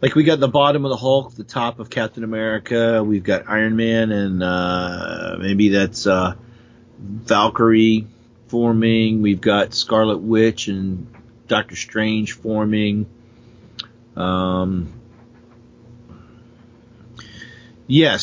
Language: English